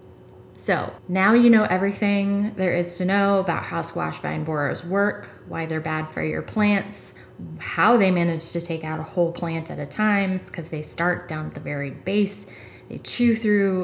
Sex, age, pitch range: female, 20-39, 160-195 Hz